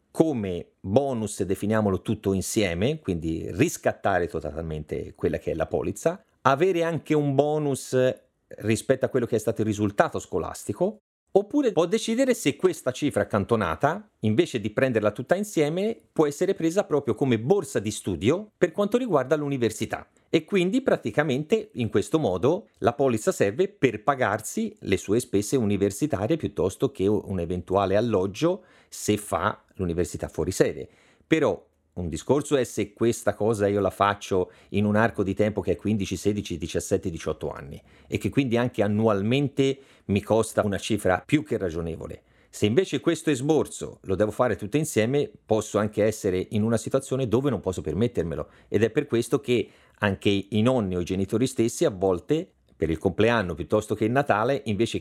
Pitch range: 100-145 Hz